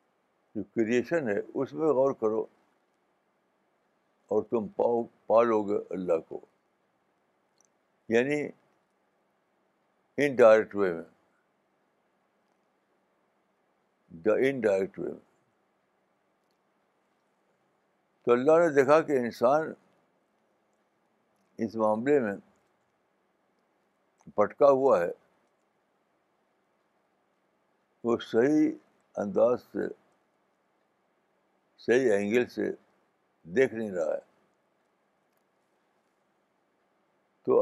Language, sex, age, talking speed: Urdu, male, 60-79, 75 wpm